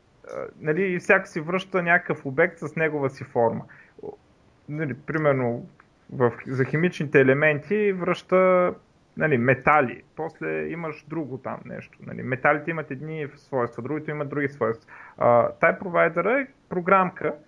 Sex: male